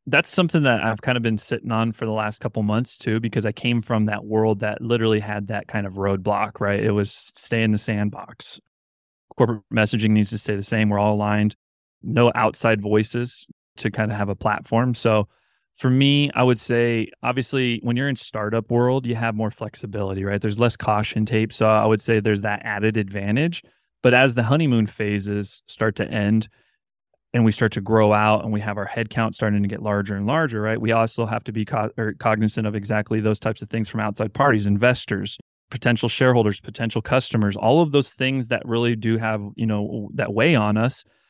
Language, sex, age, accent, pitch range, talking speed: English, male, 20-39, American, 105-120 Hz, 210 wpm